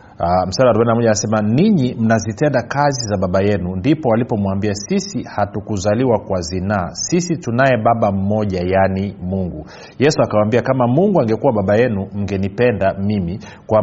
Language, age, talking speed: Swahili, 40-59, 140 wpm